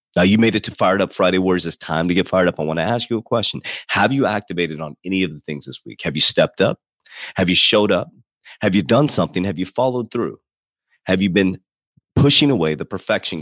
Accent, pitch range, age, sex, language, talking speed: American, 85-115 Hz, 30-49, male, English, 250 wpm